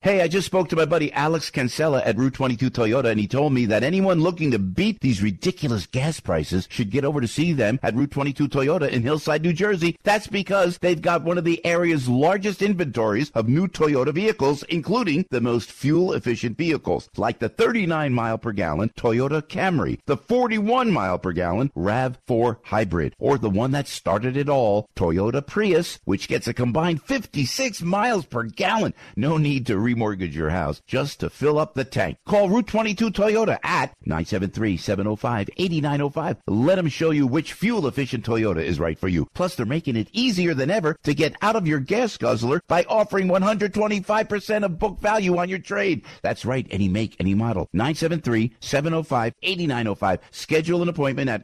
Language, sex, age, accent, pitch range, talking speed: English, male, 50-69, American, 115-180 Hz, 175 wpm